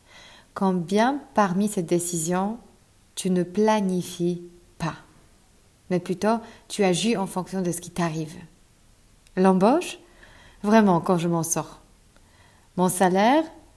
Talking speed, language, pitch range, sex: 115 wpm, French, 160-200 Hz, female